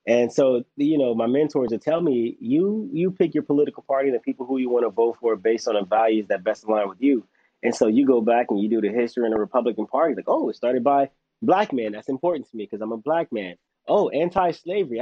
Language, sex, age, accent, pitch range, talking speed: English, male, 30-49, American, 115-145 Hz, 260 wpm